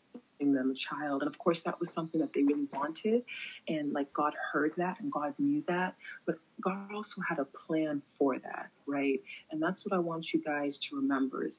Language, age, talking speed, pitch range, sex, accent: English, 30-49, 210 wpm, 145-185 Hz, female, American